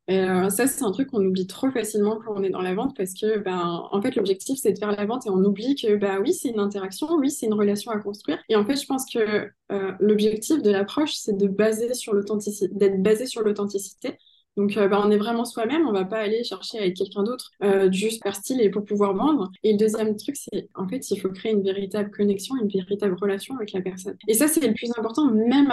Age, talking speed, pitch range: 20-39, 250 wpm, 200-245 Hz